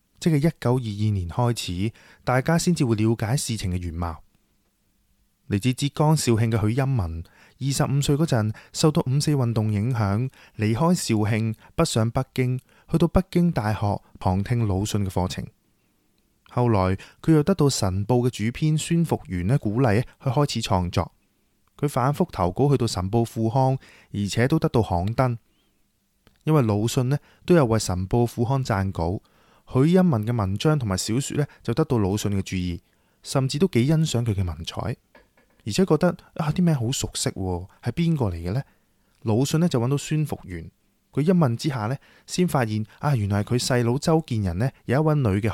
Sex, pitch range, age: male, 100-140 Hz, 20-39